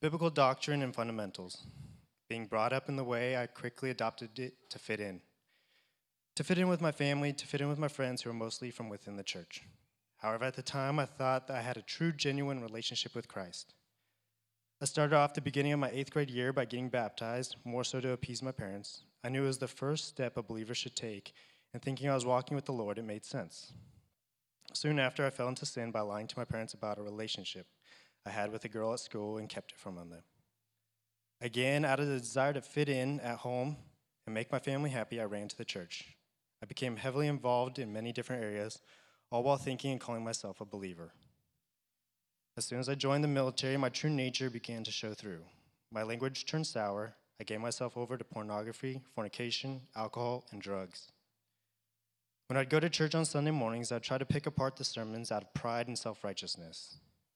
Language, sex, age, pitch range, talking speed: English, male, 20-39, 110-135 Hz, 210 wpm